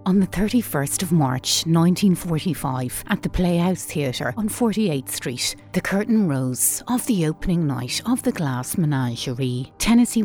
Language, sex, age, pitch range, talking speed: English, female, 30-49, 135-205 Hz, 145 wpm